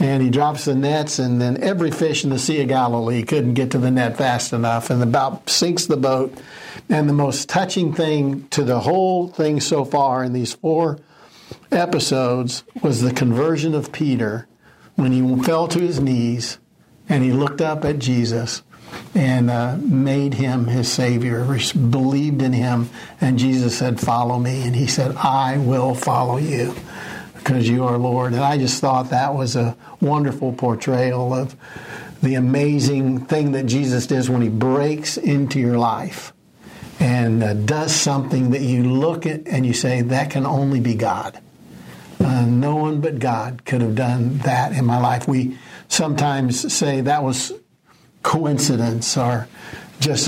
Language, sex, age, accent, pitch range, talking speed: English, male, 60-79, American, 125-145 Hz, 170 wpm